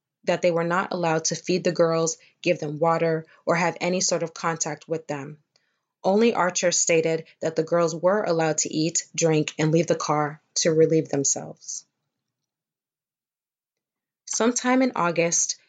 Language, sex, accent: English, female, American